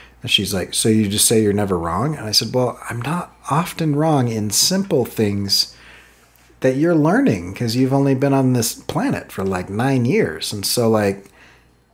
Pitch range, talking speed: 105-145 Hz, 185 wpm